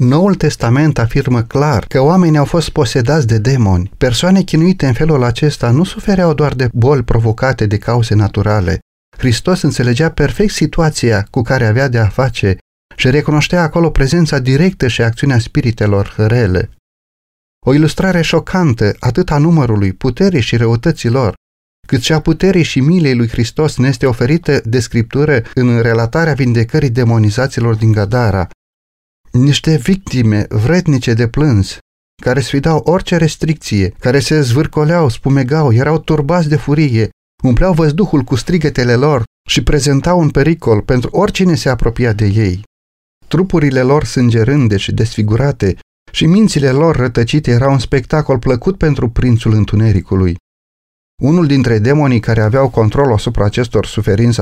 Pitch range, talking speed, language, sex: 110-150 Hz, 145 wpm, Romanian, male